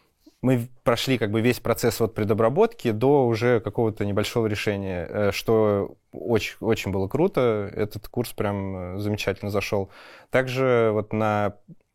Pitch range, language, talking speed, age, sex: 105-125 Hz, Russian, 110 wpm, 20-39, male